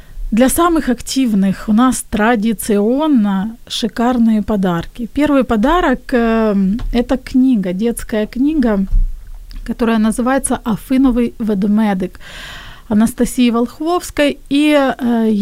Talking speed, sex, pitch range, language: 90 wpm, female, 225-275 Hz, Ukrainian